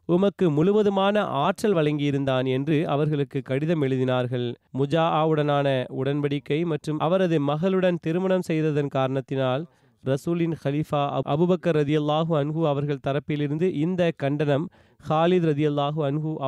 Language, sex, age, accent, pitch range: Tamil, male, 30-49, native, 140-175 Hz